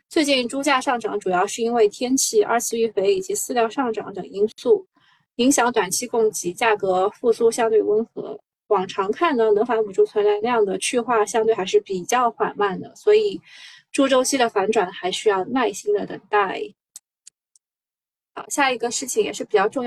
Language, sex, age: Chinese, female, 20-39